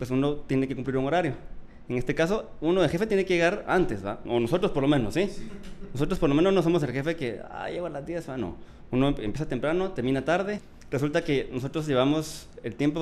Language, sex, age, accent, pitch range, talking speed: Spanish, male, 30-49, Mexican, 120-170 Hz, 235 wpm